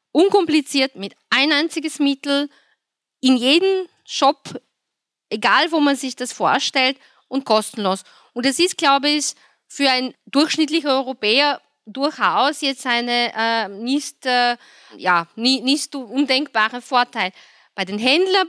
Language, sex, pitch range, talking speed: German, female, 225-285 Hz, 125 wpm